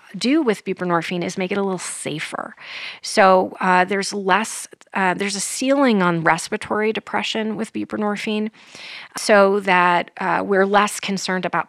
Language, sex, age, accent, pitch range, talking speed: English, female, 30-49, American, 175-215 Hz, 150 wpm